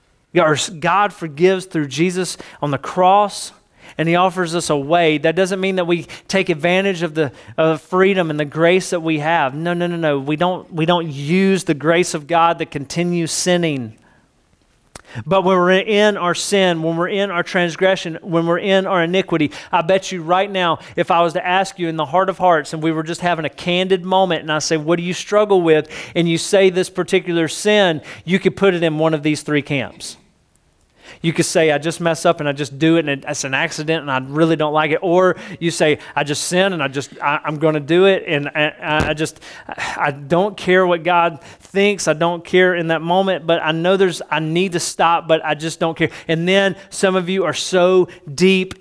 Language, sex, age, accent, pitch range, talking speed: English, male, 40-59, American, 155-185 Hz, 225 wpm